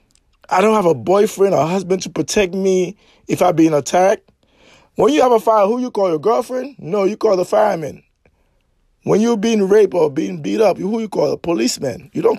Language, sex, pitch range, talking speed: English, male, 155-205 Hz, 215 wpm